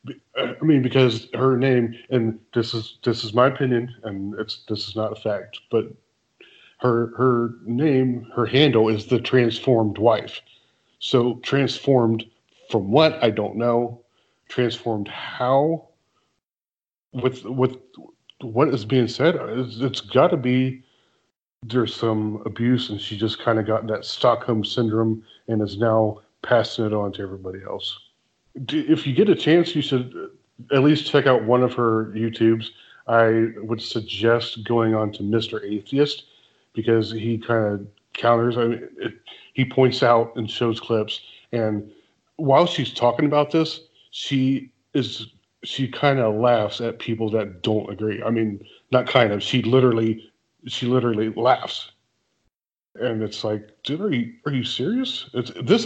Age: 40-59